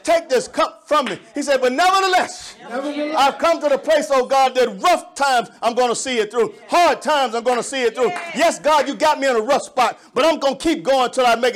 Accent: American